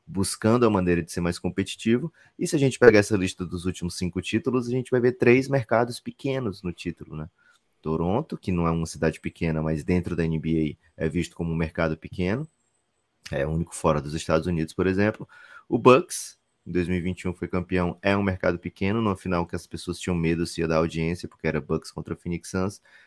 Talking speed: 210 wpm